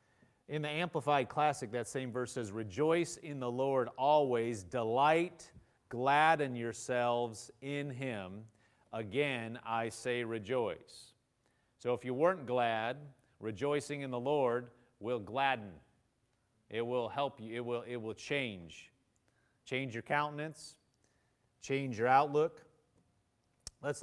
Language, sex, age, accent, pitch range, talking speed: English, male, 30-49, American, 110-135 Hz, 120 wpm